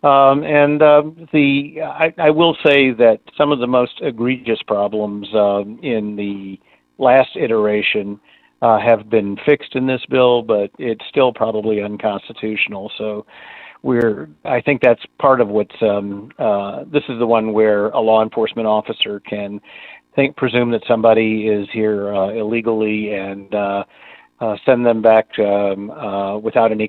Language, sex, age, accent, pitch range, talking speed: English, male, 50-69, American, 105-125 Hz, 155 wpm